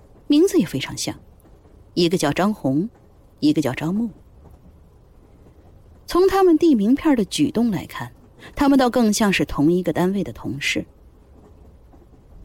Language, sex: Chinese, female